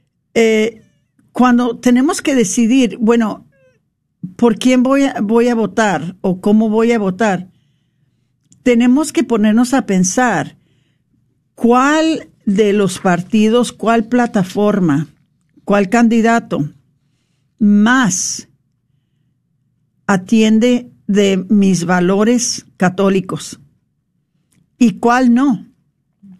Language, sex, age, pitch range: Spanish, female, 50-69, 180-240 Hz